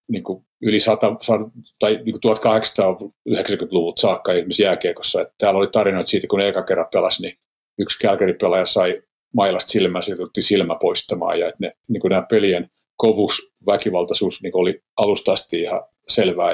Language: Finnish